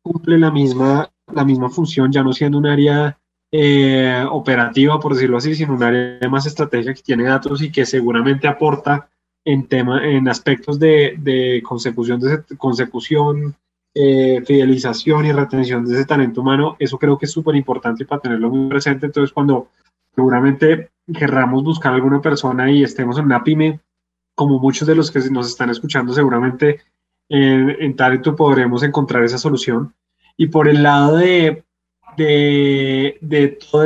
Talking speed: 165 wpm